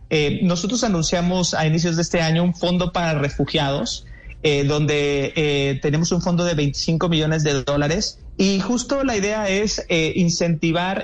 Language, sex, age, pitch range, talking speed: Spanish, male, 30-49, 150-180 Hz, 165 wpm